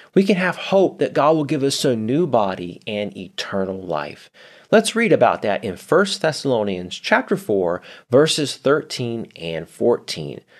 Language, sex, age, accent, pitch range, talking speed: English, male, 30-49, American, 115-180 Hz, 160 wpm